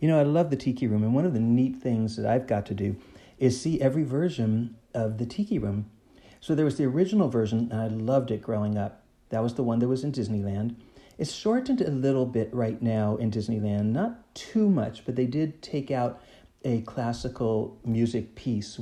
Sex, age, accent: male, 40-59, American